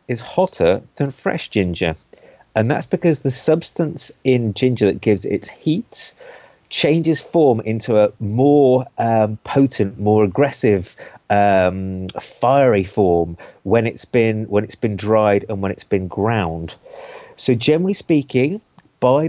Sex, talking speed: male, 135 wpm